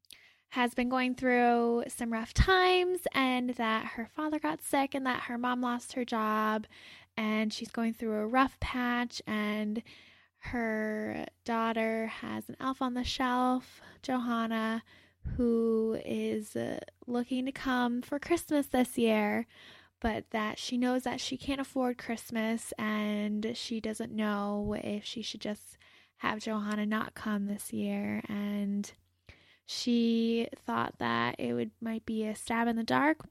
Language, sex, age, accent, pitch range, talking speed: English, female, 10-29, American, 215-245 Hz, 150 wpm